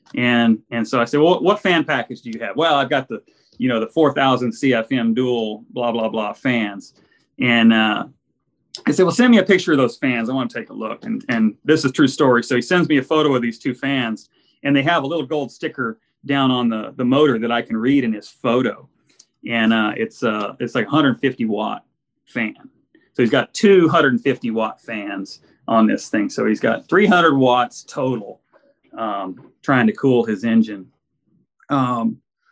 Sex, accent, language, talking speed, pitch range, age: male, American, English, 205 wpm, 120-175 Hz, 30-49